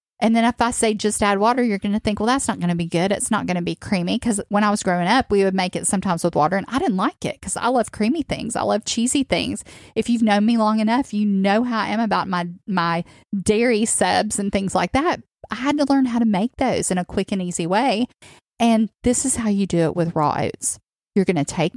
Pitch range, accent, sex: 175-220 Hz, American, female